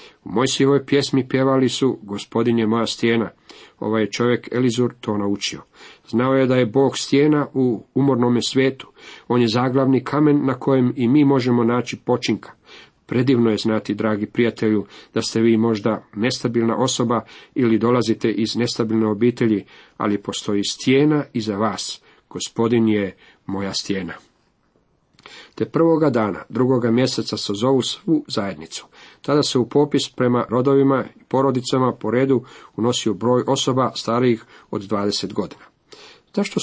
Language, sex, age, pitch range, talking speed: Croatian, male, 40-59, 115-135 Hz, 145 wpm